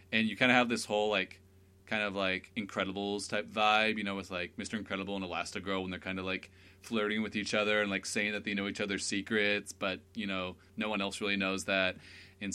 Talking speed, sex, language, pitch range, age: 235 wpm, male, English, 90-100 Hz, 30-49